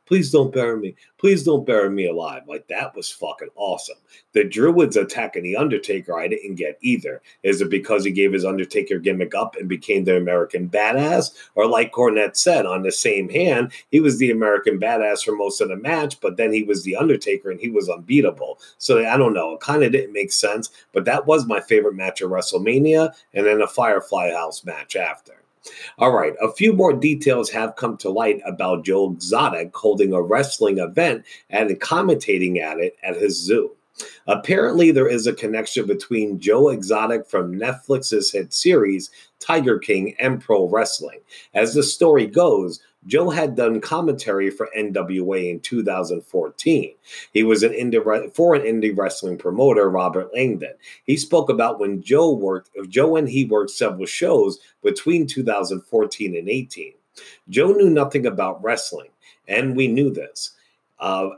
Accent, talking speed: American, 175 wpm